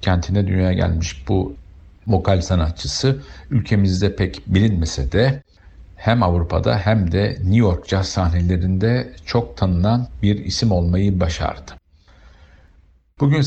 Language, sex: Turkish, male